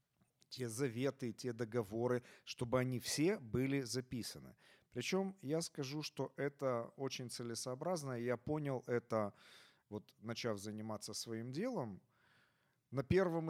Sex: male